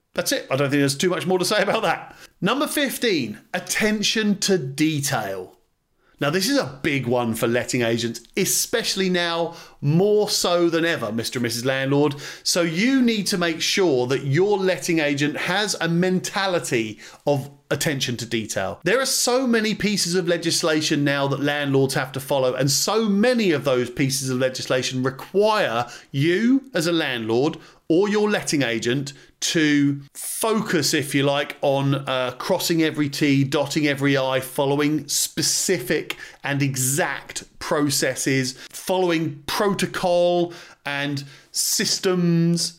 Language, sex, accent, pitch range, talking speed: English, male, British, 140-185 Hz, 150 wpm